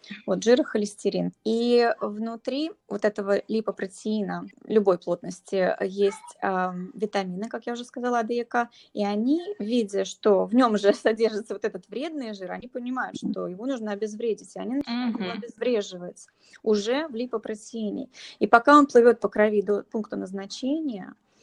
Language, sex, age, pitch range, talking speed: Russian, female, 20-39, 200-245 Hz, 145 wpm